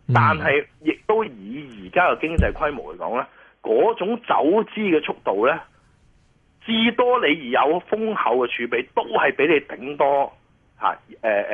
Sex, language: male, Chinese